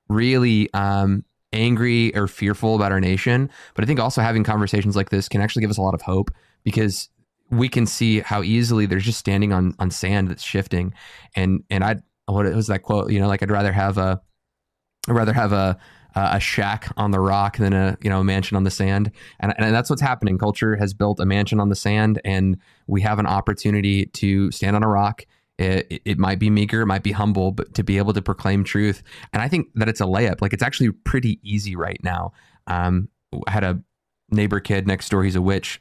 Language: English